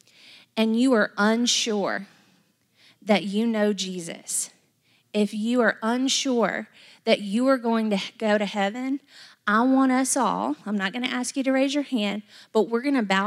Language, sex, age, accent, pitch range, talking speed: English, female, 30-49, American, 205-250 Hz, 175 wpm